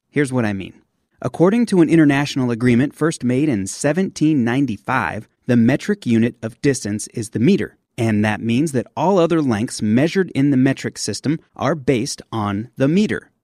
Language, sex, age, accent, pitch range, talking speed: English, male, 30-49, American, 115-160 Hz, 170 wpm